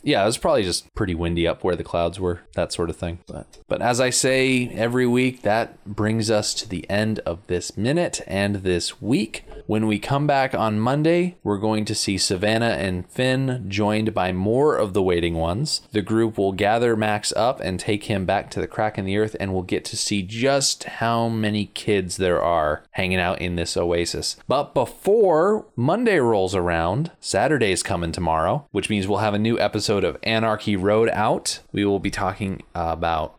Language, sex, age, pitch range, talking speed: English, male, 30-49, 95-130 Hz, 200 wpm